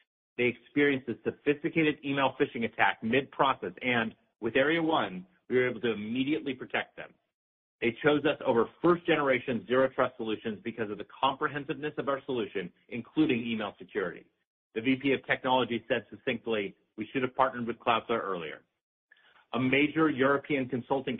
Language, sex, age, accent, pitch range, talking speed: English, male, 40-59, American, 115-140 Hz, 160 wpm